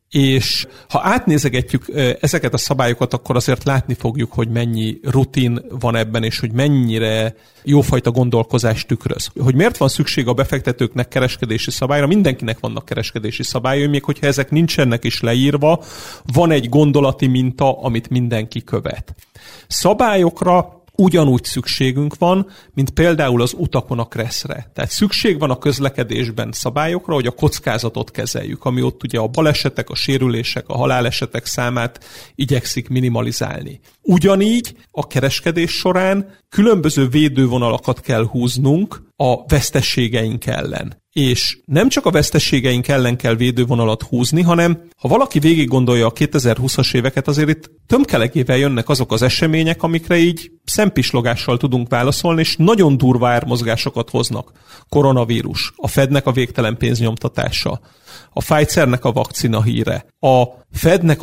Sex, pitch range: male, 120-150 Hz